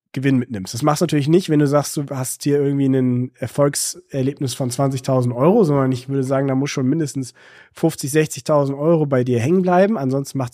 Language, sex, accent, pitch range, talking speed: German, male, German, 140-190 Hz, 205 wpm